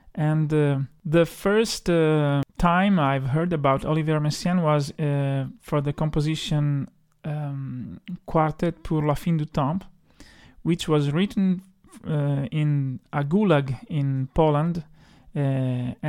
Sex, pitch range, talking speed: male, 140-165 Hz, 125 wpm